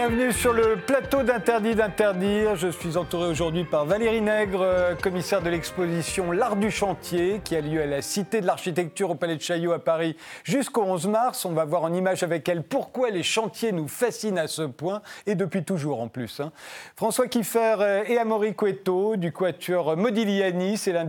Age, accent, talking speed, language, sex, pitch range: 40-59, French, 190 wpm, French, male, 165-215 Hz